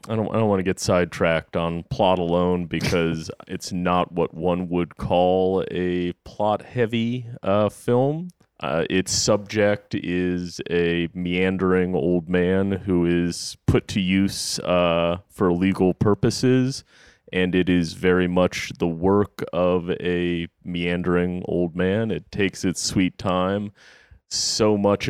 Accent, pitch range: American, 85-100 Hz